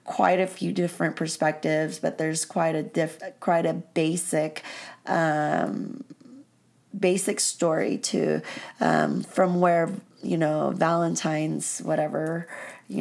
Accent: American